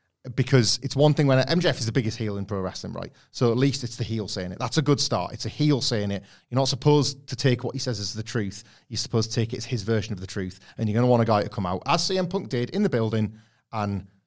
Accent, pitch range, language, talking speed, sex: British, 110-135 Hz, English, 300 wpm, male